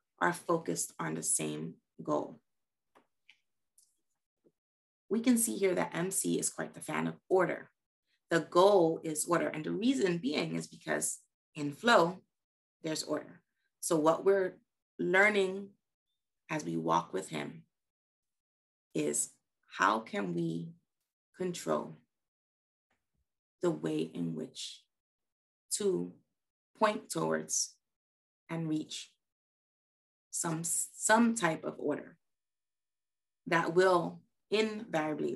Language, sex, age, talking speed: English, female, 30-49, 105 wpm